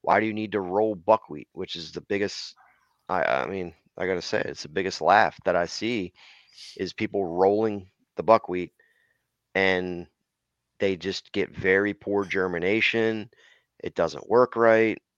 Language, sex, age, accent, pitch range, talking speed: English, male, 30-49, American, 90-110 Hz, 160 wpm